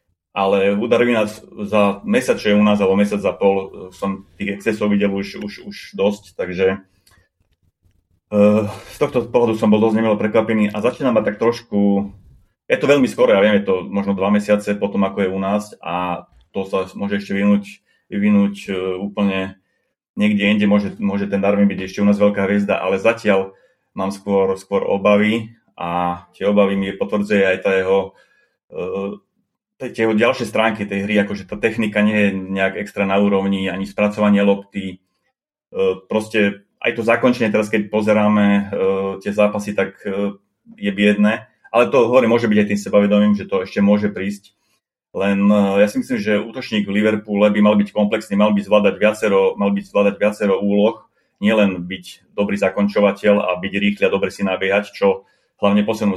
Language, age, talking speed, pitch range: Slovak, 30-49, 175 wpm, 100-105 Hz